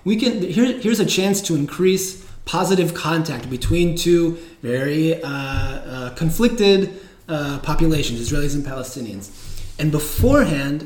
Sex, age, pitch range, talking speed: male, 20-39, 130-180 Hz, 125 wpm